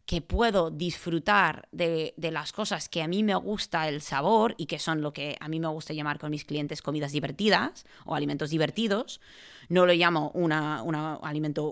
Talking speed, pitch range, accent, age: 195 wpm, 155-195 Hz, Spanish, 20-39